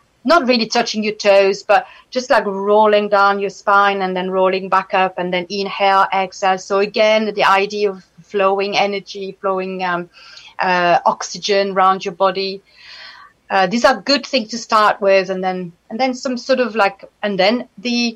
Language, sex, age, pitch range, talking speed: English, female, 30-49, 195-230 Hz, 180 wpm